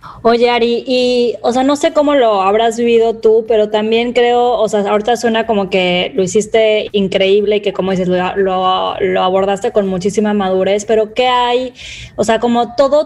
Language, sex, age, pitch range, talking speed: Spanish, female, 20-39, 205-240 Hz, 190 wpm